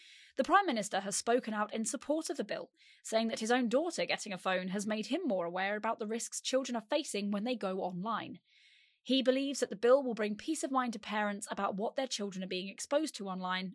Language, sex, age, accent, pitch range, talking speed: English, female, 20-39, British, 200-275 Hz, 240 wpm